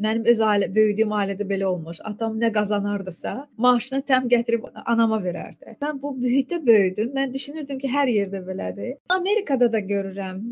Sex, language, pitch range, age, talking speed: female, Turkish, 220-265 Hz, 30-49, 160 wpm